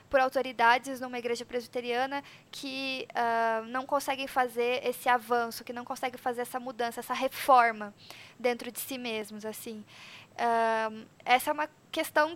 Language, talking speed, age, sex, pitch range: Portuguese, 145 wpm, 10-29, female, 240-280 Hz